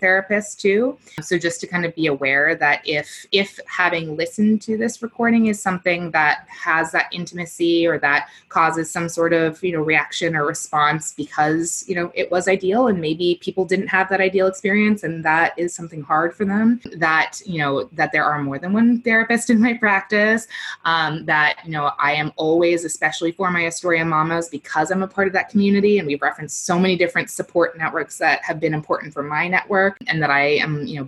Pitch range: 145-185 Hz